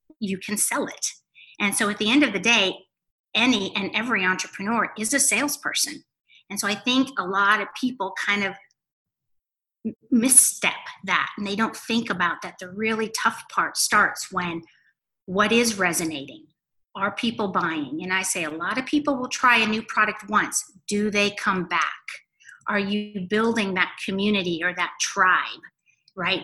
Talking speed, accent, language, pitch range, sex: 170 wpm, American, English, 185-225 Hz, female